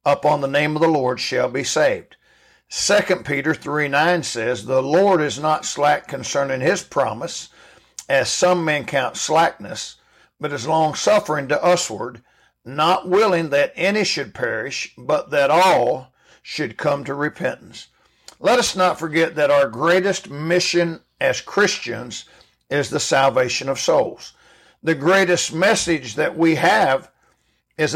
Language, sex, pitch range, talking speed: English, male, 130-165 Hz, 145 wpm